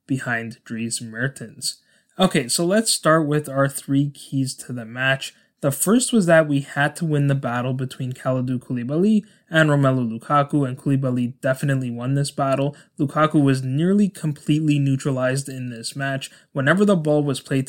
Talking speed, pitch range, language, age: 165 wpm, 130-150 Hz, English, 20-39